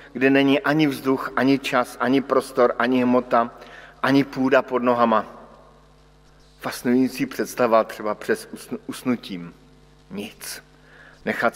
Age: 50-69